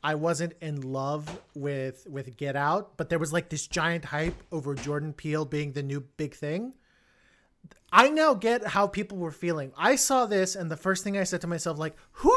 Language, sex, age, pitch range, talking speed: English, male, 30-49, 150-200 Hz, 210 wpm